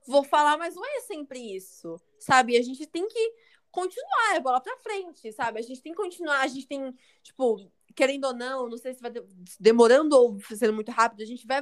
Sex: female